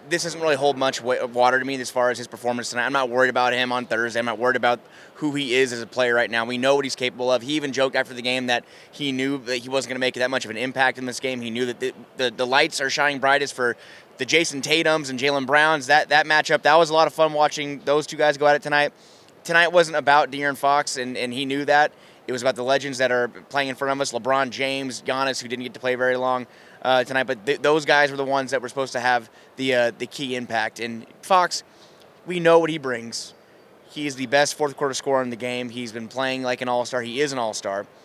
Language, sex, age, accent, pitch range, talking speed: English, male, 20-39, American, 125-145 Hz, 275 wpm